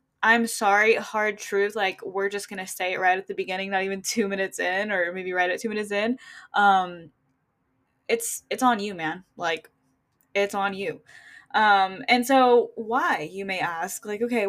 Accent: American